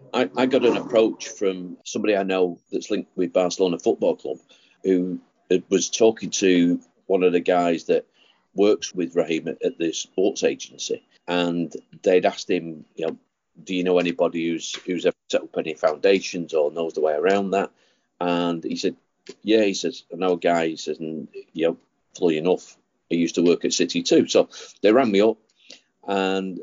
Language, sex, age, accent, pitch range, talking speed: English, male, 40-59, British, 90-120 Hz, 190 wpm